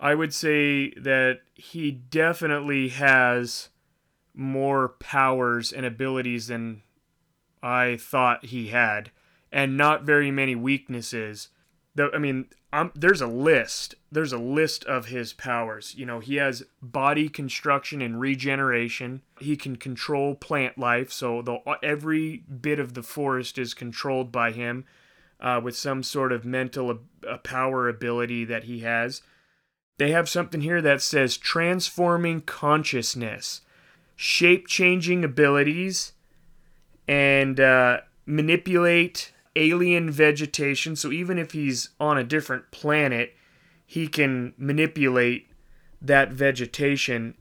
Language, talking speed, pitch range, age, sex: English, 120 wpm, 125-150 Hz, 30-49, male